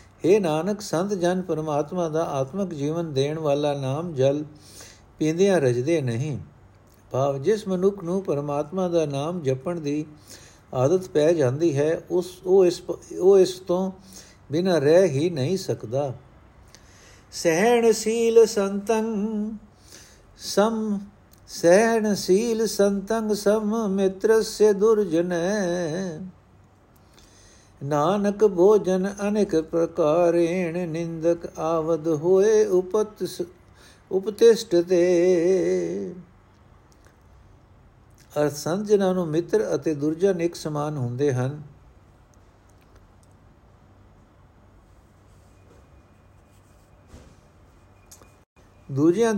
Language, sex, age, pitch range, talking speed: Punjabi, male, 60-79, 120-190 Hz, 85 wpm